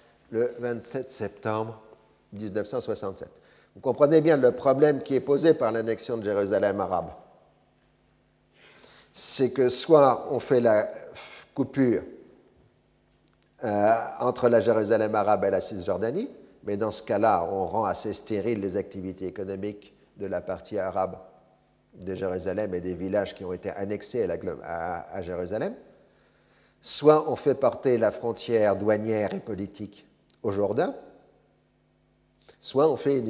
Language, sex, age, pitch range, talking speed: French, male, 50-69, 105-135 Hz, 140 wpm